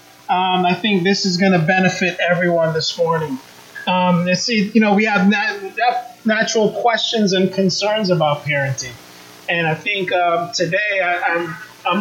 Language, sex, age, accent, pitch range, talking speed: English, male, 30-49, American, 165-200 Hz, 165 wpm